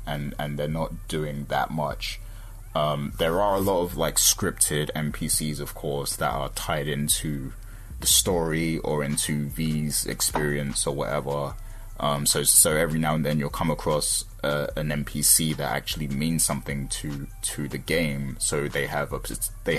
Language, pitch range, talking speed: English, 75-85 Hz, 170 wpm